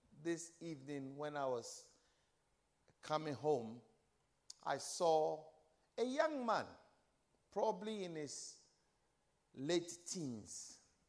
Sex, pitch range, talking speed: male, 170-275 Hz, 90 wpm